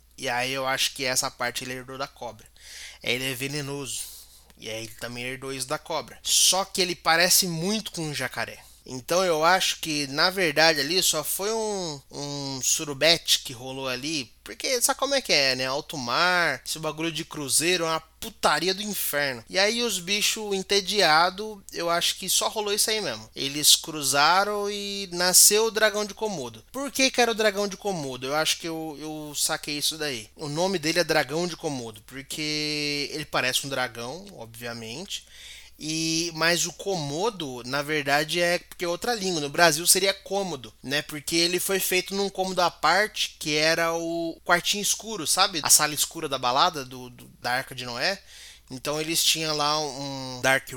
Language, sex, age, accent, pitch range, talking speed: Portuguese, male, 20-39, Brazilian, 140-195 Hz, 190 wpm